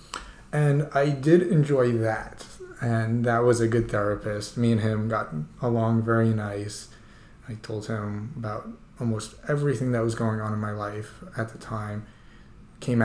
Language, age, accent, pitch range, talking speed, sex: English, 30-49, American, 110-130 Hz, 160 wpm, male